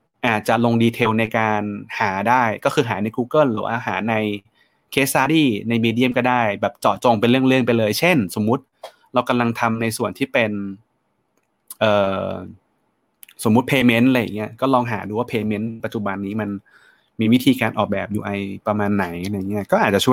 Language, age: Thai, 20-39